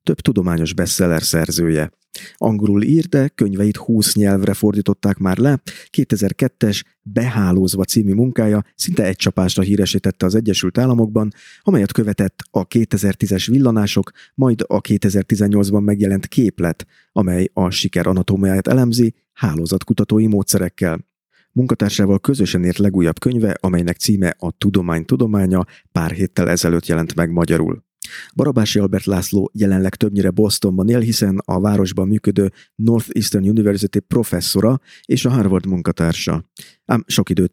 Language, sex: Hungarian, male